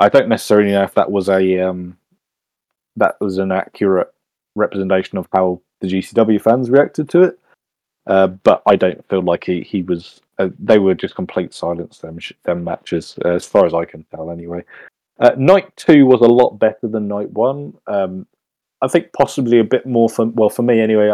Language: English